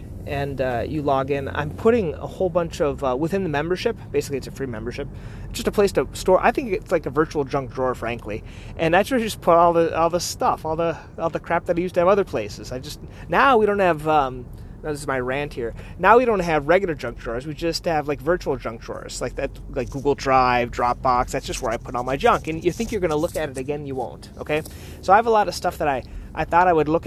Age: 30-49